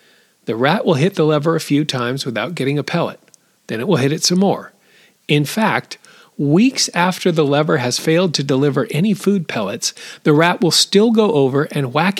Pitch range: 130-175 Hz